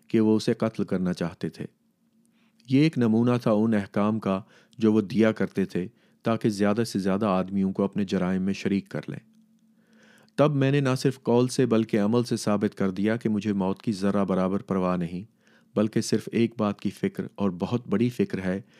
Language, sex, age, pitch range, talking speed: Urdu, male, 40-59, 95-120 Hz, 200 wpm